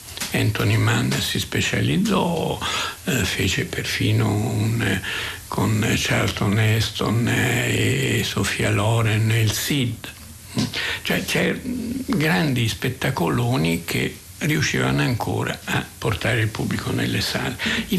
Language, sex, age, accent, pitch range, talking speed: Italian, male, 60-79, native, 95-120 Hz, 90 wpm